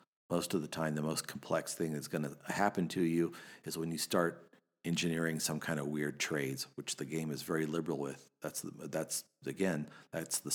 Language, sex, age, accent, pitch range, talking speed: English, male, 50-69, American, 75-85 Hz, 210 wpm